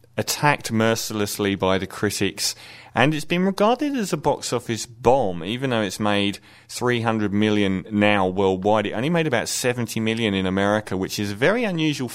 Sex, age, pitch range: male, 30-49, 95-130 Hz